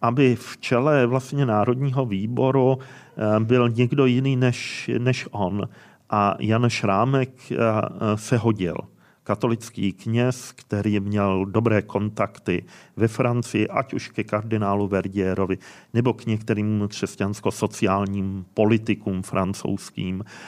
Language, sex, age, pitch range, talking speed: Czech, male, 40-59, 95-115 Hz, 105 wpm